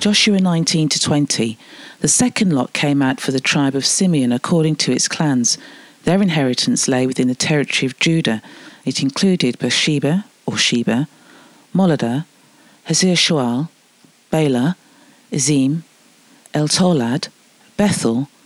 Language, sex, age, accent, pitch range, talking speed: English, female, 40-59, British, 135-205 Hz, 120 wpm